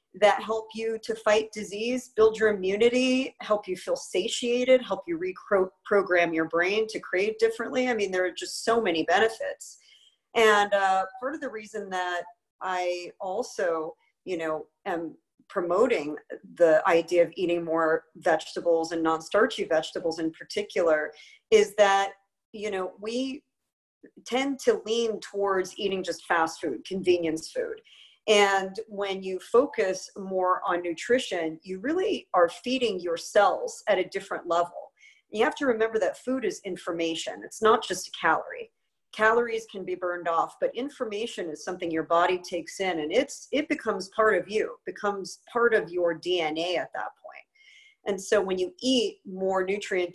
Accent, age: American, 40-59